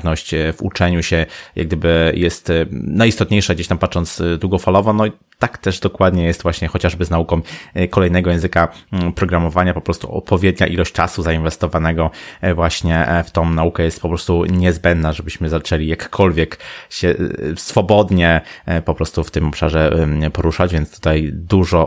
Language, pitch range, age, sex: Polish, 80-95 Hz, 20-39, male